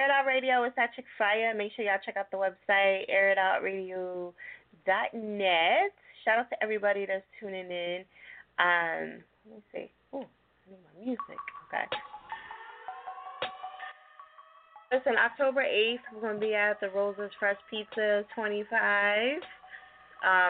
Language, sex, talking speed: English, female, 140 wpm